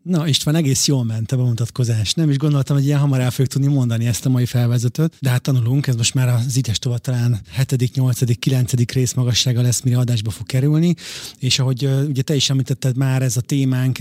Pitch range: 120-135 Hz